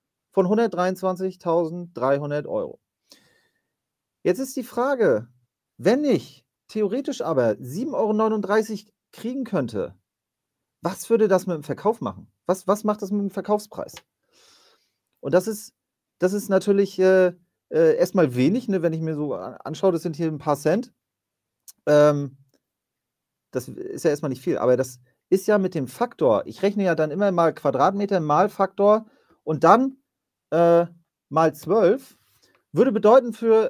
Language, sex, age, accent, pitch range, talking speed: German, male, 40-59, German, 160-215 Hz, 145 wpm